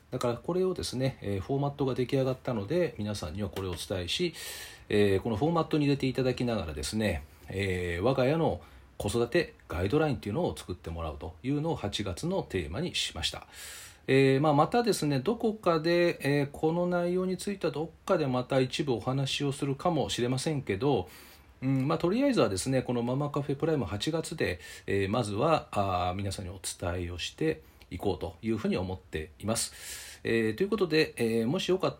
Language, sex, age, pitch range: Japanese, male, 40-59, 95-150 Hz